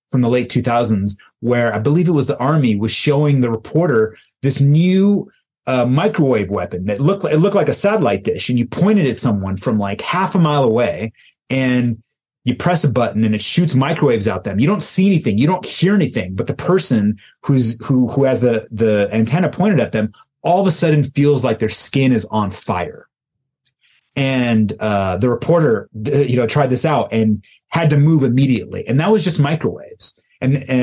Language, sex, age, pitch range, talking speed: English, male, 30-49, 115-150 Hz, 200 wpm